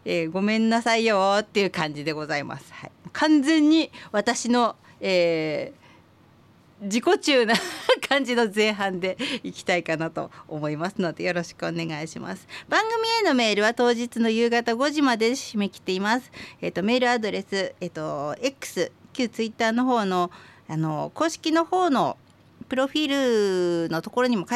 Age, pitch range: 50-69, 175-240 Hz